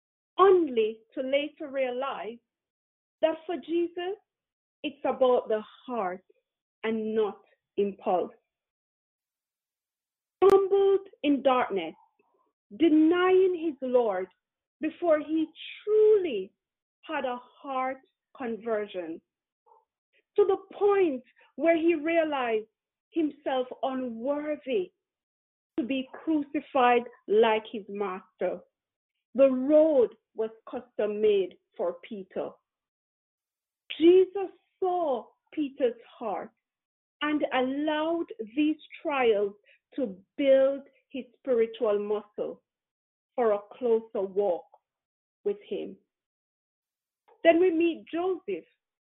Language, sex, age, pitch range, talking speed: English, female, 40-59, 240-370 Hz, 85 wpm